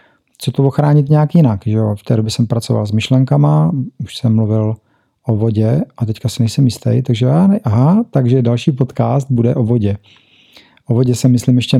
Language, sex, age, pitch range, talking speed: Czech, male, 40-59, 115-135 Hz, 190 wpm